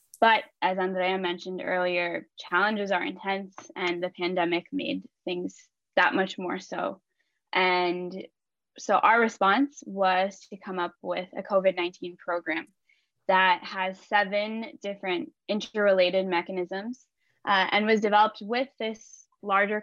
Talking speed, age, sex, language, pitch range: 125 wpm, 10-29, female, English, 185-215 Hz